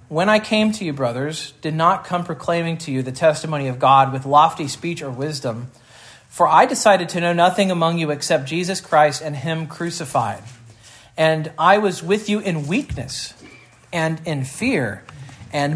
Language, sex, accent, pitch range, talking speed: English, male, American, 135-175 Hz, 175 wpm